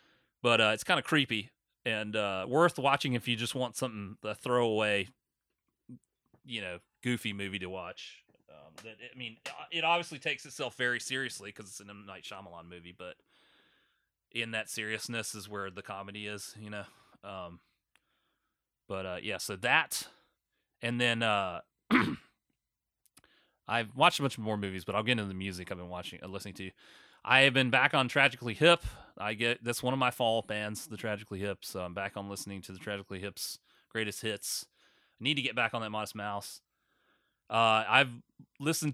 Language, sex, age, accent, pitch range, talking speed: English, male, 30-49, American, 100-135 Hz, 185 wpm